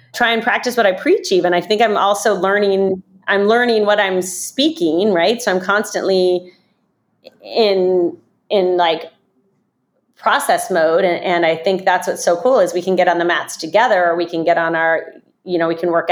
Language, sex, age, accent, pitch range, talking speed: English, female, 30-49, American, 175-220 Hz, 195 wpm